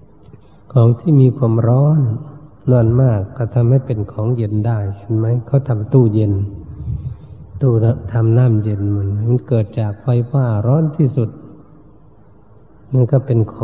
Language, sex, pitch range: Thai, male, 105-130 Hz